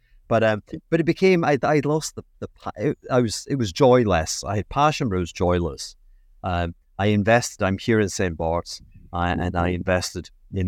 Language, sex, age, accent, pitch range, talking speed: English, male, 30-49, British, 90-115 Hz, 190 wpm